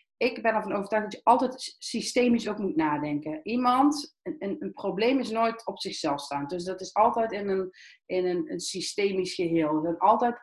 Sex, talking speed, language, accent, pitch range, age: female, 195 wpm, Dutch, Dutch, 180-240 Hz, 40-59